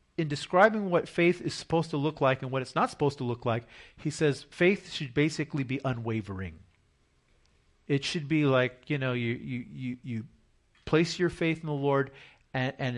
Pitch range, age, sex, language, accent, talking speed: 115-150 Hz, 40-59, male, English, American, 195 wpm